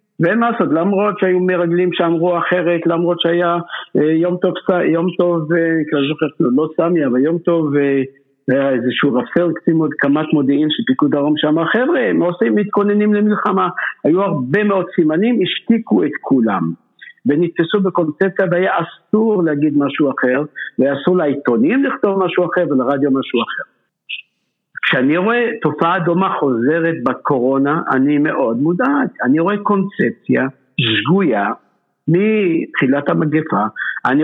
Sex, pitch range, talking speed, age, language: male, 140-185 Hz, 130 wpm, 50-69, Hebrew